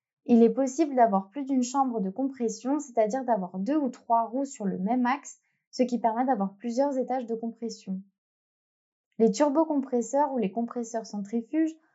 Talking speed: 165 wpm